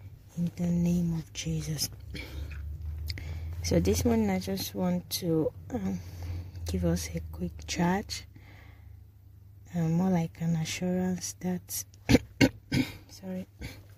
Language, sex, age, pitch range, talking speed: English, female, 20-39, 95-155 Hz, 105 wpm